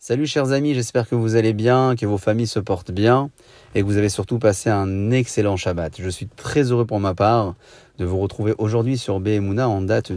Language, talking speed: French, 225 wpm